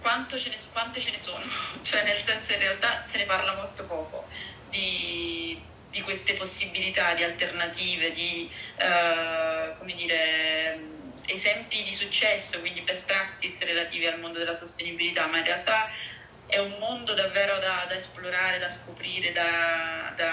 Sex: female